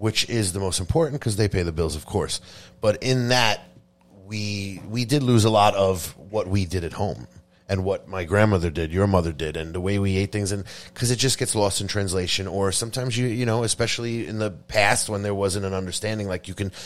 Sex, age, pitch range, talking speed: male, 30-49, 90-110 Hz, 235 wpm